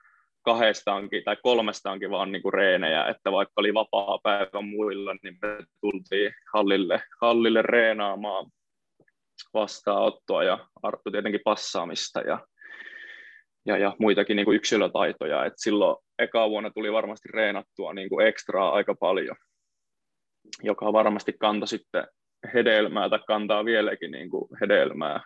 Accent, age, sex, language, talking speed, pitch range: native, 20-39, male, Finnish, 120 wpm, 105-115 Hz